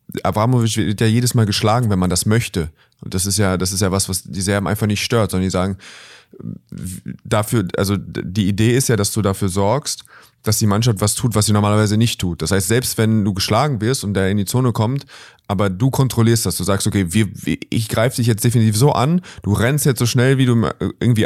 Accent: German